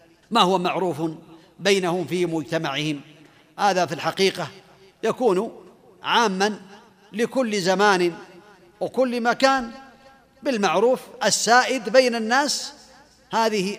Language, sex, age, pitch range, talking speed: Arabic, male, 50-69, 180-240 Hz, 85 wpm